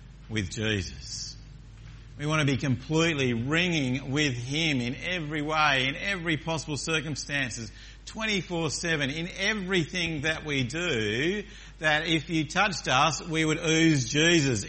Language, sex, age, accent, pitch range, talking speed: English, male, 50-69, Australian, 125-160 Hz, 135 wpm